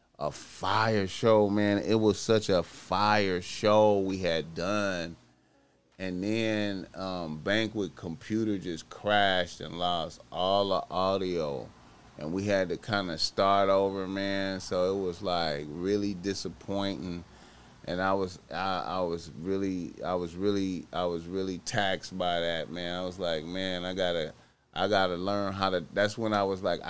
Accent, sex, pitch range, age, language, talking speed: American, male, 90-105 Hz, 30-49, English, 165 wpm